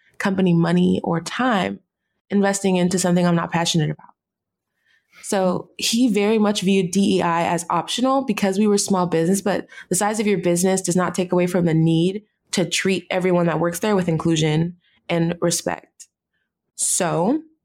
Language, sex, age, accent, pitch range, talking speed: English, female, 20-39, American, 180-215 Hz, 165 wpm